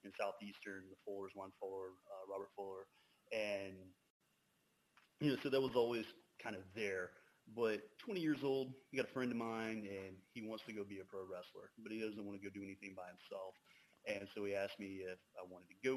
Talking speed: 220 wpm